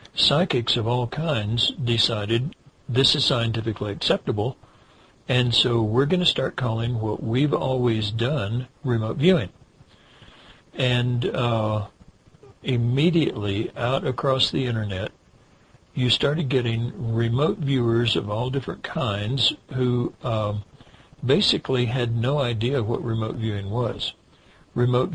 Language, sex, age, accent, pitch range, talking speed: English, male, 60-79, American, 110-135 Hz, 115 wpm